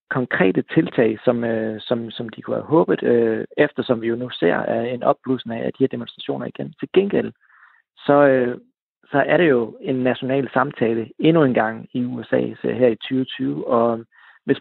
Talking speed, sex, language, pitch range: 185 wpm, male, Danish, 120-135 Hz